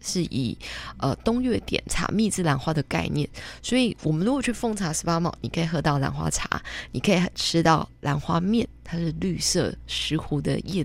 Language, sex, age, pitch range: Chinese, female, 20-39, 160-210 Hz